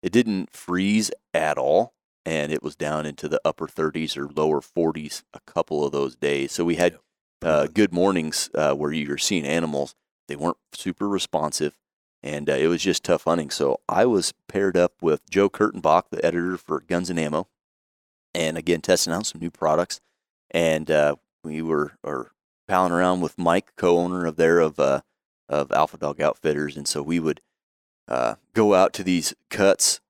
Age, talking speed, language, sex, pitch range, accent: 30-49, 185 wpm, English, male, 75-90 Hz, American